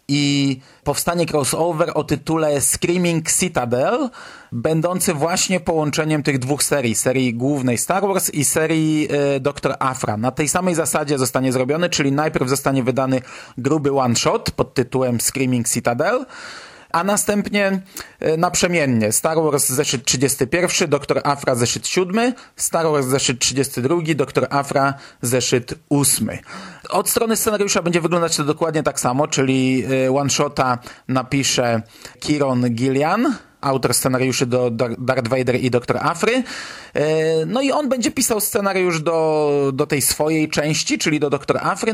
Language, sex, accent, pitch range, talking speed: Polish, male, native, 130-160 Hz, 135 wpm